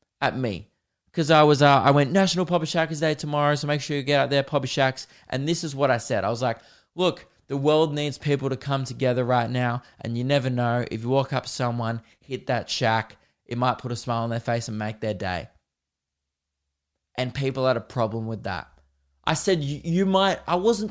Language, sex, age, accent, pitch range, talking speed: English, male, 20-39, Australian, 115-150 Hz, 225 wpm